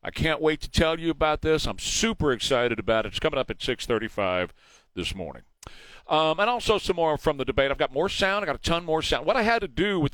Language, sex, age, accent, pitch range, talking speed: English, male, 40-59, American, 120-175 Hz, 260 wpm